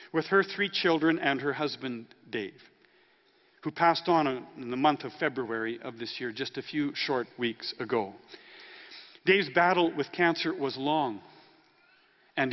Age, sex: 50-69, male